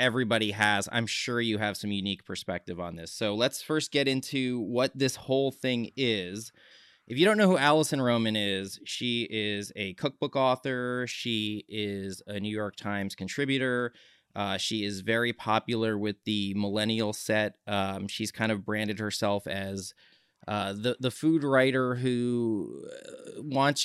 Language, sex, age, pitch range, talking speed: English, male, 20-39, 105-130 Hz, 160 wpm